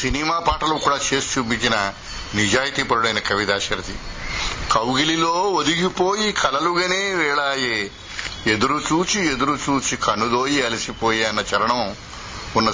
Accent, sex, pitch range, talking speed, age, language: native, male, 110-150 Hz, 100 wpm, 60-79, Telugu